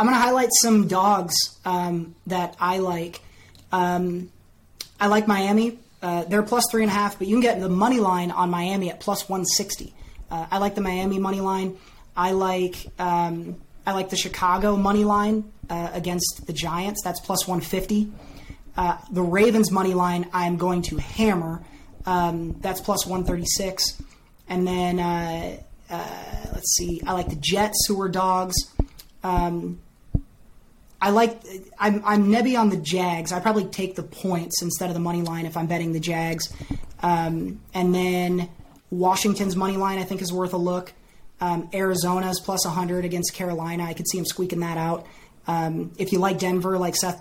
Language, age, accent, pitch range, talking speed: English, 20-39, American, 175-195 Hz, 175 wpm